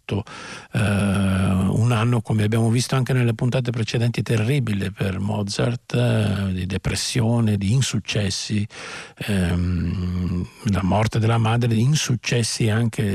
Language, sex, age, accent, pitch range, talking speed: Italian, male, 50-69, native, 100-120 Hz, 105 wpm